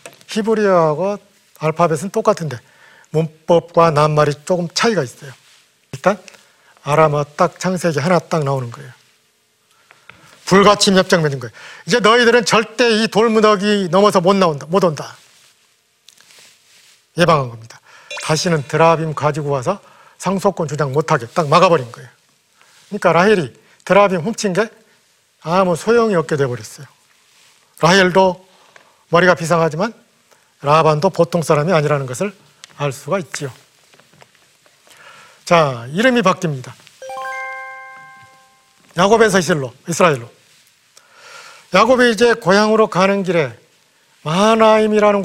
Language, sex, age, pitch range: Korean, male, 40-59, 155-210 Hz